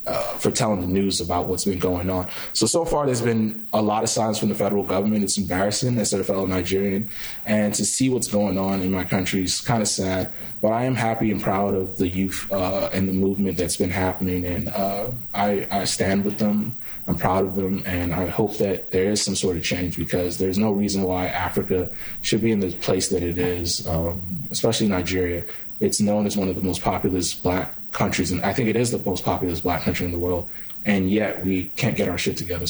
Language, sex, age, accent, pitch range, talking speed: English, male, 20-39, American, 90-105 Hz, 235 wpm